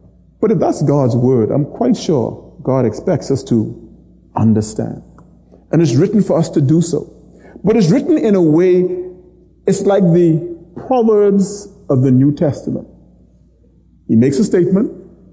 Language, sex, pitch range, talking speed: English, male, 140-205 Hz, 155 wpm